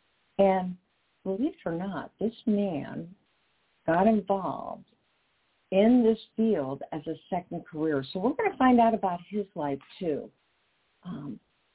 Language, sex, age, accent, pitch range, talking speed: English, female, 50-69, American, 160-215 Hz, 140 wpm